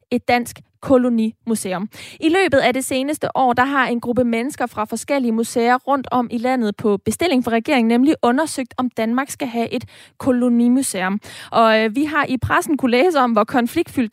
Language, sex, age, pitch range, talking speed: Danish, female, 20-39, 225-280 Hz, 185 wpm